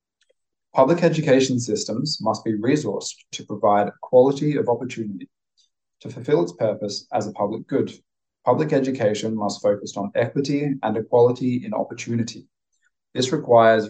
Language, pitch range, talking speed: English, 105-130 Hz, 135 wpm